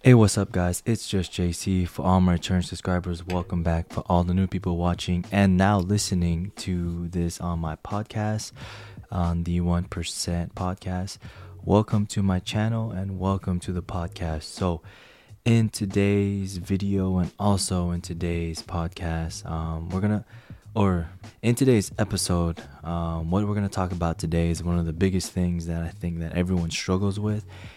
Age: 20-39